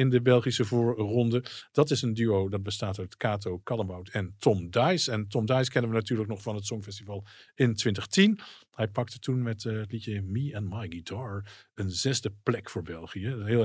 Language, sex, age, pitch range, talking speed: Dutch, male, 50-69, 105-140 Hz, 200 wpm